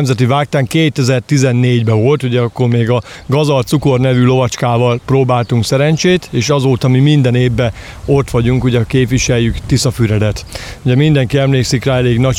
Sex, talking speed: male, 145 wpm